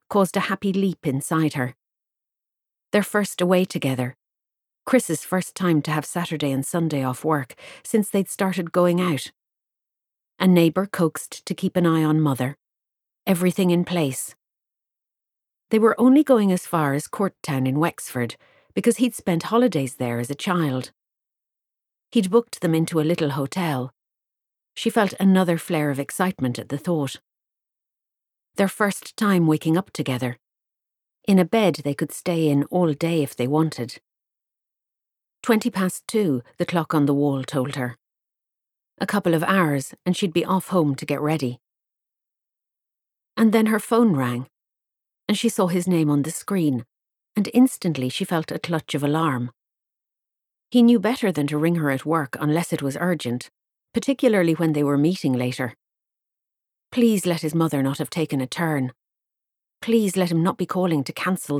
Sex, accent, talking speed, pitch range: female, Irish, 165 wpm, 140-190 Hz